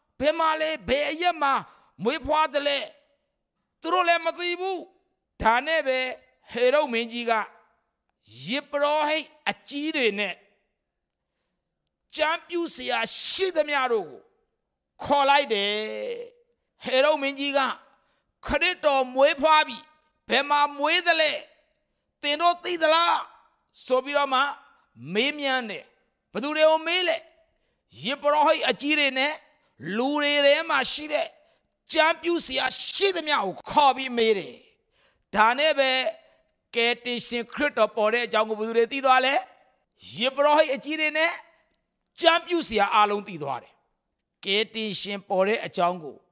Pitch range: 240-320 Hz